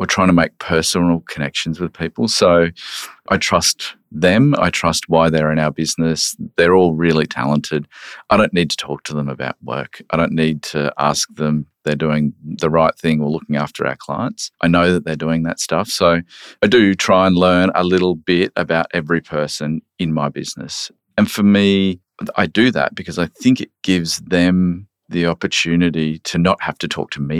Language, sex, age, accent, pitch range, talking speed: English, male, 40-59, Australian, 80-90 Hz, 200 wpm